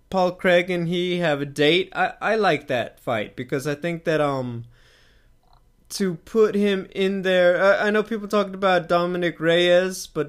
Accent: American